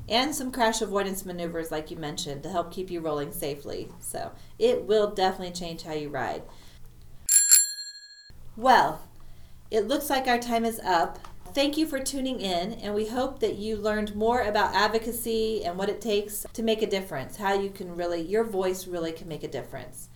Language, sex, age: English, female, 40-59